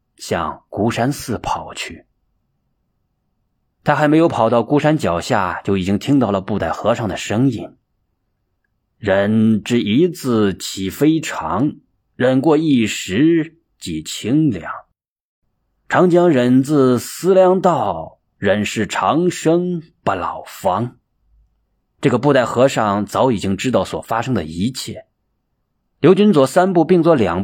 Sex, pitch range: male, 100-155 Hz